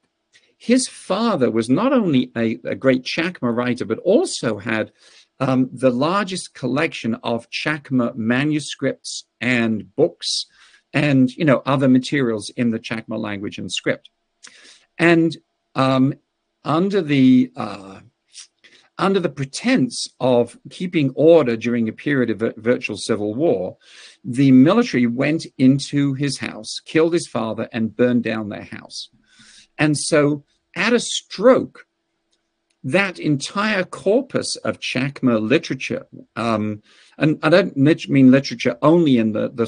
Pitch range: 120-165 Hz